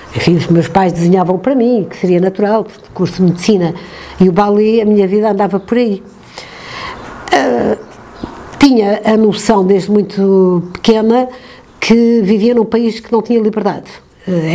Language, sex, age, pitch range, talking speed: Portuguese, female, 50-69, 175-215 Hz, 160 wpm